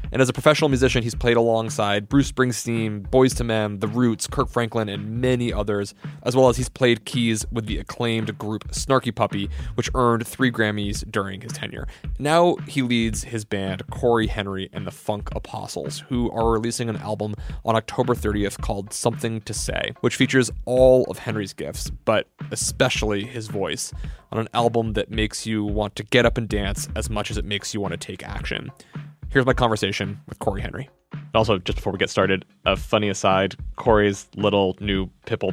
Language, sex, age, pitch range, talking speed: English, male, 20-39, 100-120 Hz, 190 wpm